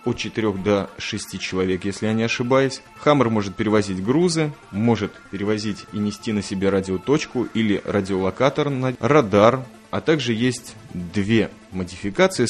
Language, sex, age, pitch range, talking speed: Russian, male, 20-39, 100-120 Hz, 140 wpm